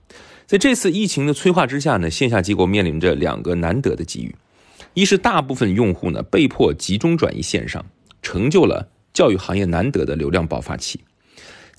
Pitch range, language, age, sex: 90-140 Hz, Chinese, 30-49, male